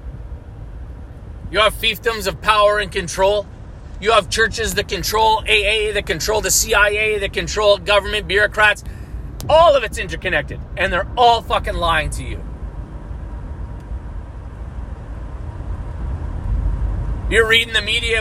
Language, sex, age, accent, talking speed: English, male, 30-49, American, 120 wpm